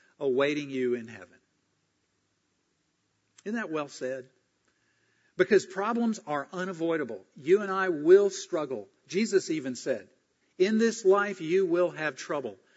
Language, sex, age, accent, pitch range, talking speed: English, male, 50-69, American, 135-190 Hz, 125 wpm